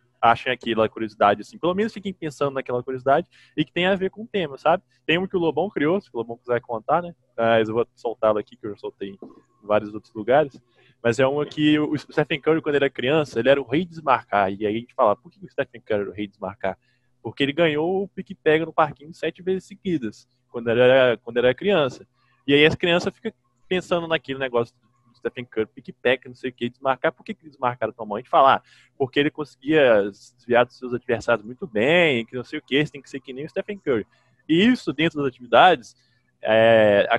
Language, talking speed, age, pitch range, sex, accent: Portuguese, 240 wpm, 20-39, 120-165 Hz, male, Brazilian